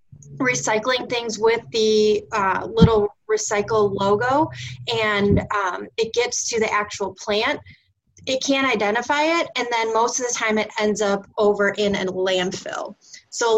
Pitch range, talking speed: 195-225 Hz, 155 wpm